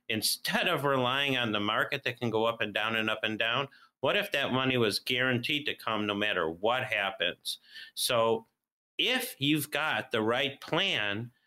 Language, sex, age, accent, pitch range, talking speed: English, male, 50-69, American, 110-130 Hz, 185 wpm